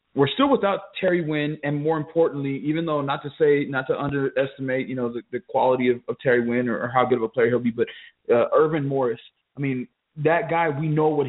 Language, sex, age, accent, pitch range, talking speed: English, male, 20-39, American, 135-170 Hz, 240 wpm